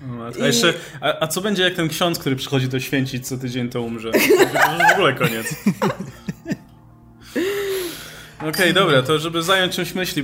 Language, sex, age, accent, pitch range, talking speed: Polish, male, 20-39, native, 130-160 Hz, 180 wpm